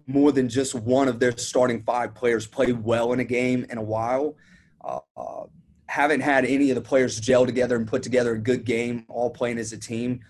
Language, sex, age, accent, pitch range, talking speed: English, male, 30-49, American, 115-140 Hz, 220 wpm